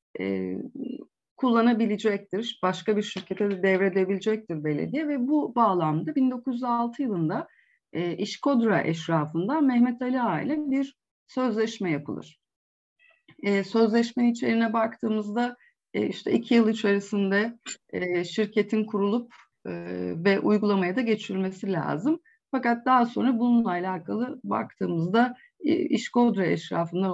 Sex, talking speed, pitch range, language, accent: female, 110 wpm, 175-250 Hz, Turkish, native